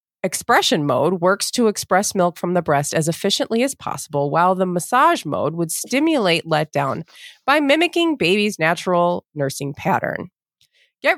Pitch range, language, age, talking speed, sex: 165-250 Hz, English, 30-49, 145 wpm, female